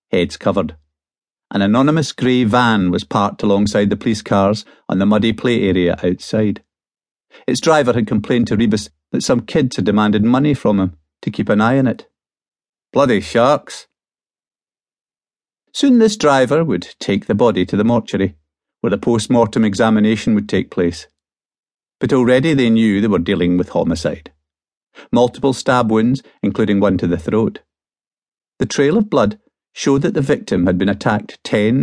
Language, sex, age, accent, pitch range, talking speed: English, male, 50-69, British, 95-125 Hz, 165 wpm